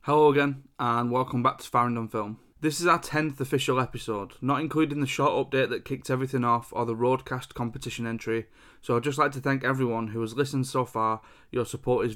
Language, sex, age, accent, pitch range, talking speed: English, male, 20-39, British, 120-140 Hz, 210 wpm